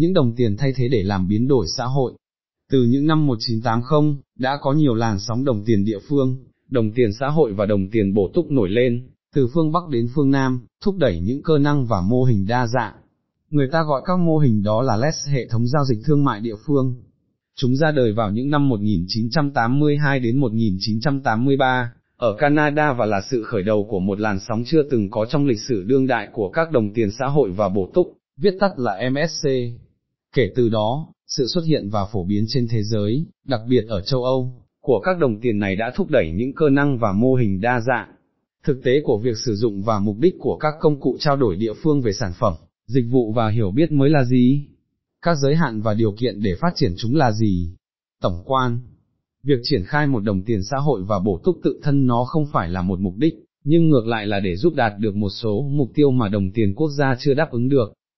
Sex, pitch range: male, 110-145 Hz